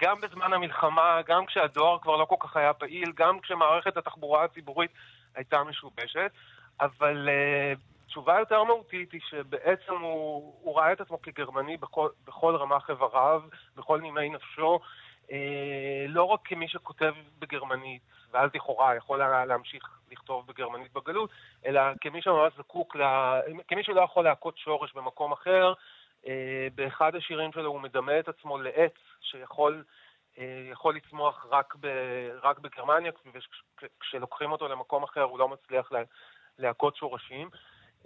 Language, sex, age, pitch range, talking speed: Hebrew, male, 30-49, 135-165 Hz, 135 wpm